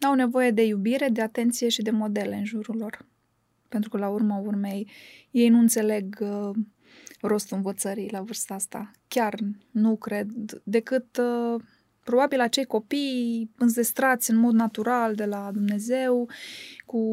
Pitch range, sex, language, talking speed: 215-245 Hz, female, Romanian, 140 wpm